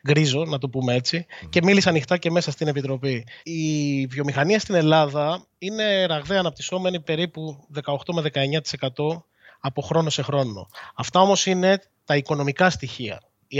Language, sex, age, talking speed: Greek, male, 20-39, 145 wpm